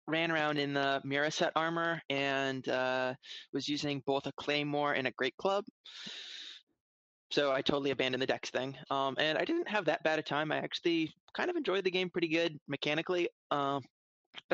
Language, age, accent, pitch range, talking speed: English, 20-39, American, 135-150 Hz, 185 wpm